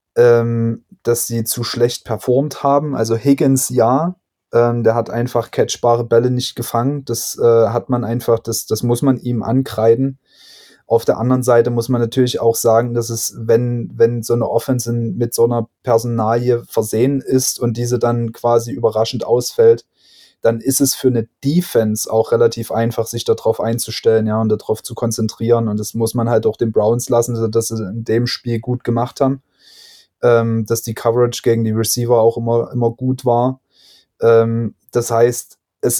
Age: 20-39